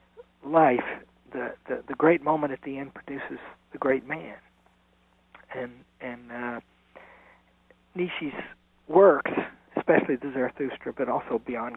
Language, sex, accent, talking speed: English, male, American, 120 wpm